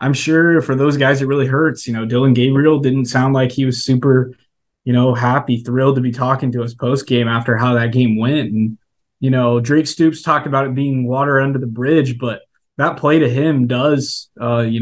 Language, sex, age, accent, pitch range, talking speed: English, male, 20-39, American, 120-140 Hz, 220 wpm